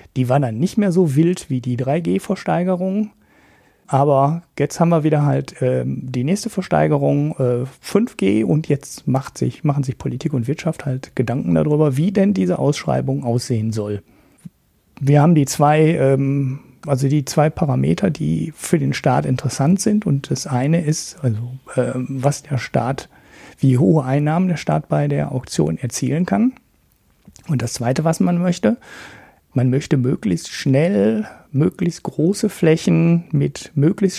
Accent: German